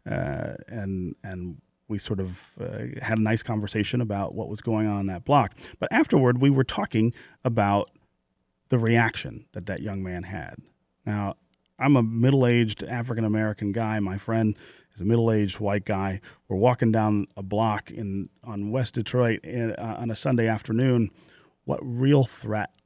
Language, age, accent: English, 30-49, American